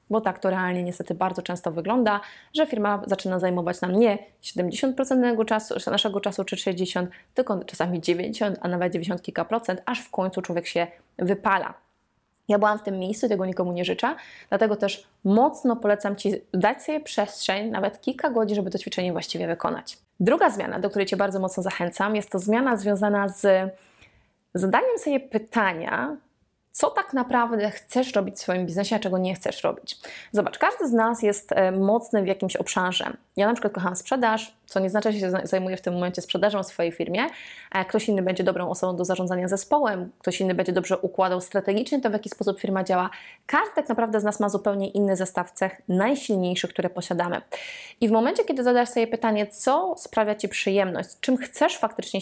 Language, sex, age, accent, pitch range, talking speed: Polish, female, 20-39, native, 185-225 Hz, 185 wpm